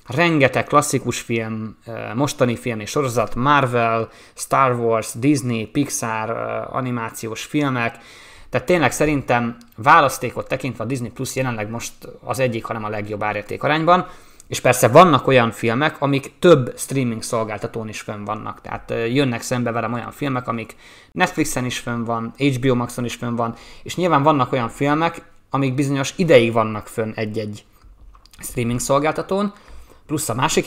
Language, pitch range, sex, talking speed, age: Hungarian, 115-145 Hz, male, 145 wpm, 20-39